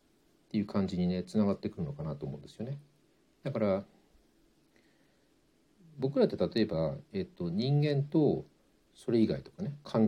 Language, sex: Japanese, male